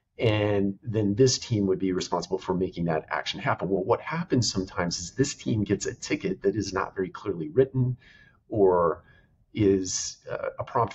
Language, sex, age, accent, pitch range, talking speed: English, male, 40-59, American, 95-115 Hz, 180 wpm